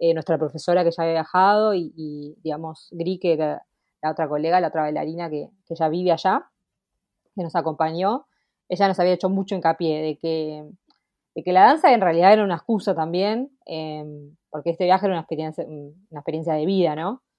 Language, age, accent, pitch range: Spanish, 20-39, Argentinian, 160-195 Hz